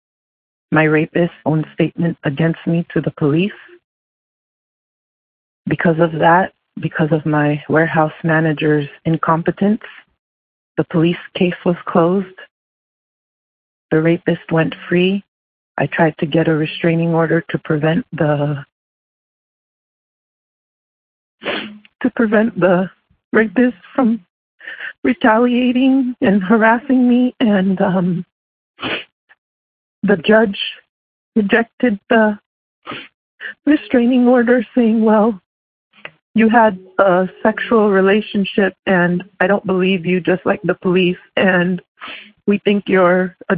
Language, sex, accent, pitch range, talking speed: English, female, American, 165-210 Hz, 105 wpm